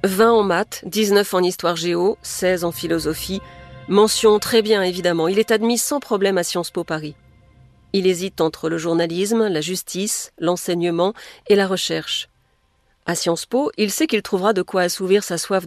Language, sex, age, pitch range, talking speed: French, female, 40-59, 170-205 Hz, 170 wpm